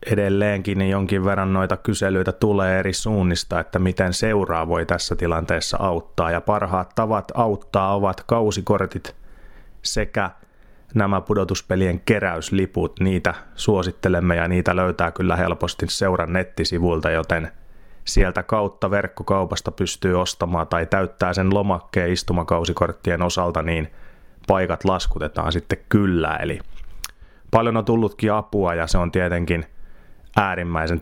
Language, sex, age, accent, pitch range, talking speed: Finnish, male, 30-49, native, 85-95 Hz, 120 wpm